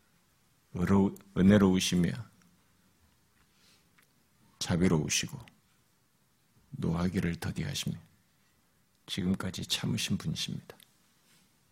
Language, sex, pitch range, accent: Korean, male, 95-110 Hz, native